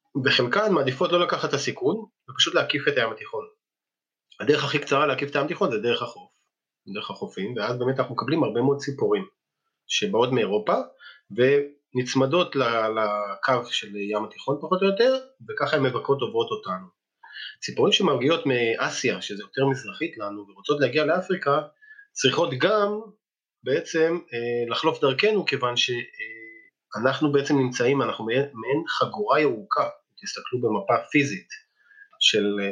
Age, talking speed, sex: 30-49, 130 wpm, male